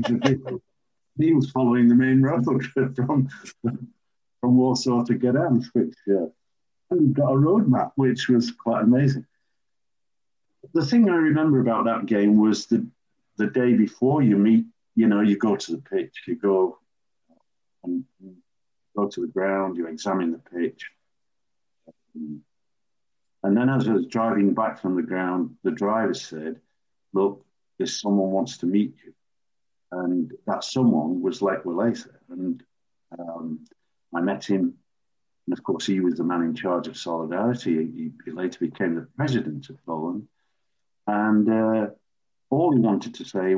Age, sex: 50-69, male